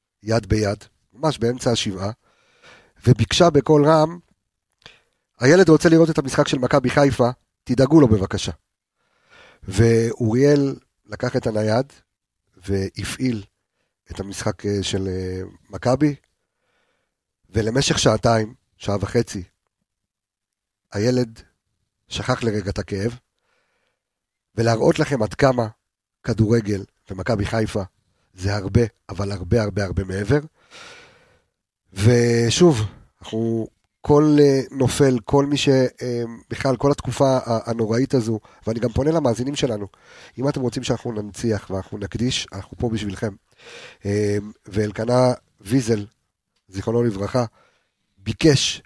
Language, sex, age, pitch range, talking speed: Hebrew, male, 50-69, 100-130 Hz, 100 wpm